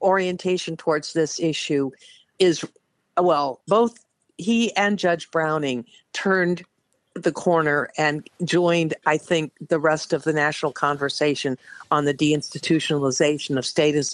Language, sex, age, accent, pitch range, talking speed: English, female, 50-69, American, 150-180 Hz, 125 wpm